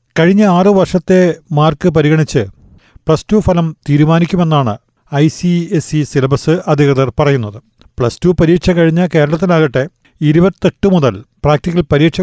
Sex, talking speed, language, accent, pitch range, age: male, 110 wpm, Malayalam, native, 135-165 Hz, 40-59